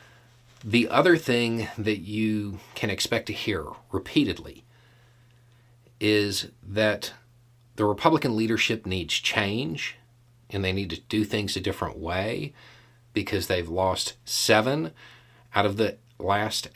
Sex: male